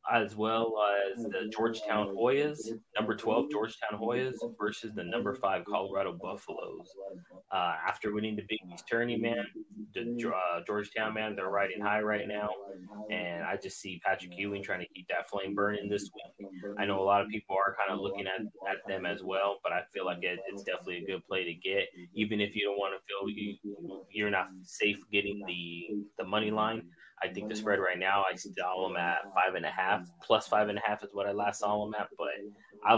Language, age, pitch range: English, 20-39, 95-105 Hz